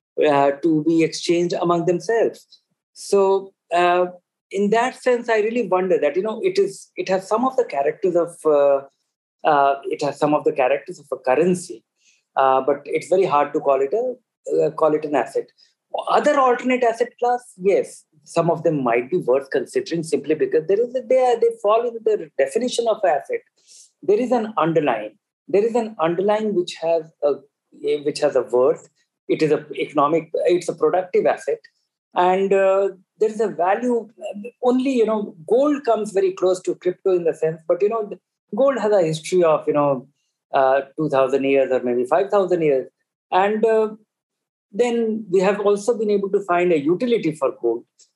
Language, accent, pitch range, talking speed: English, Indian, 165-250 Hz, 185 wpm